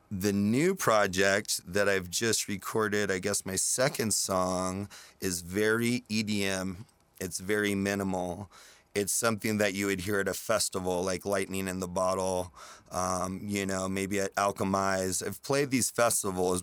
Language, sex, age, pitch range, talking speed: English, male, 30-49, 95-115 Hz, 150 wpm